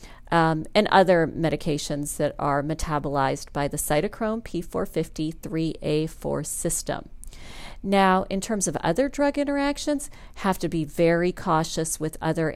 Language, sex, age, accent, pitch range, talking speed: English, female, 40-59, American, 155-200 Hz, 125 wpm